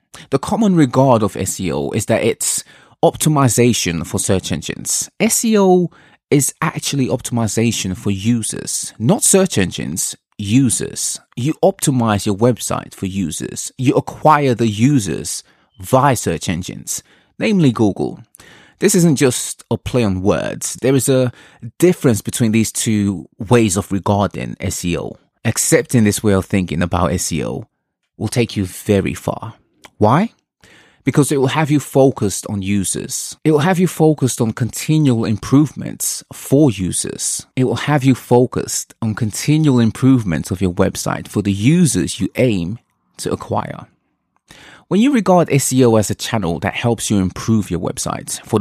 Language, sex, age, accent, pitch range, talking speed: English, male, 20-39, British, 100-145 Hz, 145 wpm